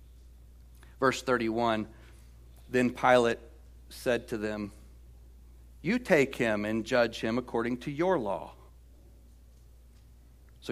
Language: English